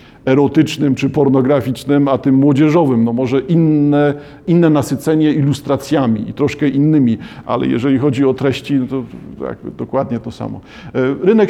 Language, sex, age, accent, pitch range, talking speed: Polish, male, 50-69, native, 130-155 Hz, 140 wpm